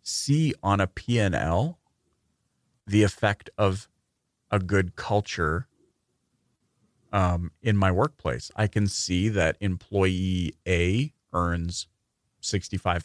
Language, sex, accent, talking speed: English, male, American, 100 wpm